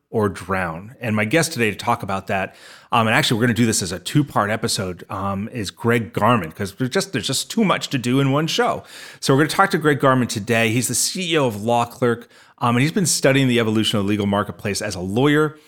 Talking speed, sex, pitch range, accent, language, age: 255 wpm, male, 105-130 Hz, American, English, 30-49